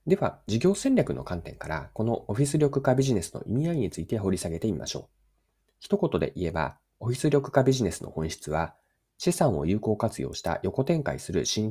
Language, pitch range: Japanese, 80-130 Hz